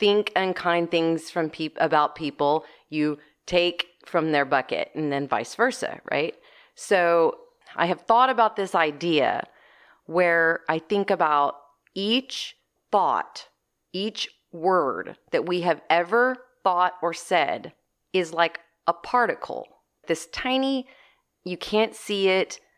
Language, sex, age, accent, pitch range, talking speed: English, female, 30-49, American, 170-230 Hz, 130 wpm